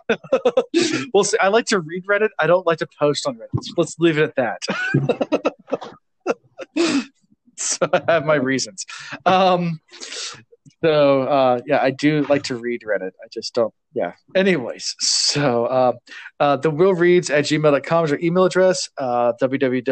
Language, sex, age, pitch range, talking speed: English, male, 20-39, 125-170 Hz, 145 wpm